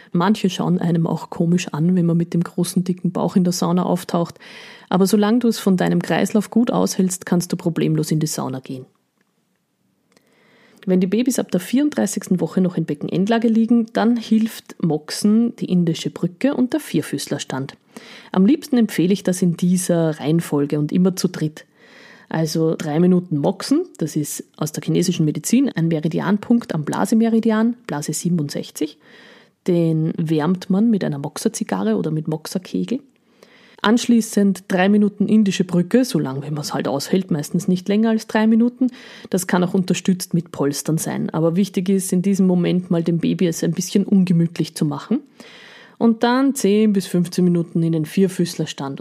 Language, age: German, 30-49